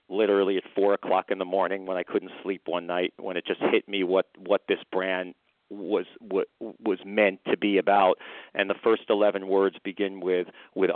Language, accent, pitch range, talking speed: English, American, 95-105 Hz, 195 wpm